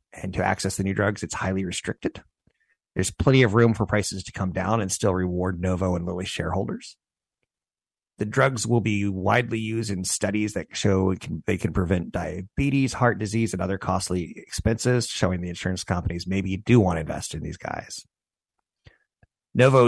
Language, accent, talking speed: English, American, 175 wpm